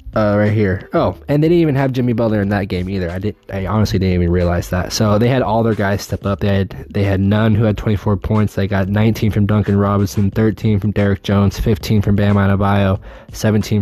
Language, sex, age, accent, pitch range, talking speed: English, male, 20-39, American, 95-110 Hz, 240 wpm